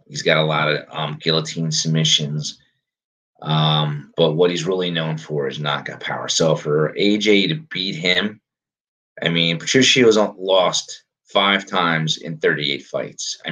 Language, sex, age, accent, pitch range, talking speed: English, male, 30-49, American, 80-95 Hz, 155 wpm